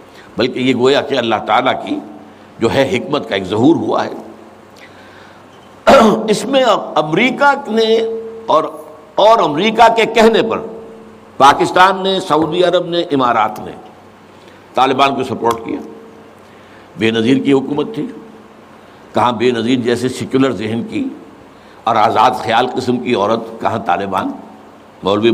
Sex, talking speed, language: male, 135 wpm, Urdu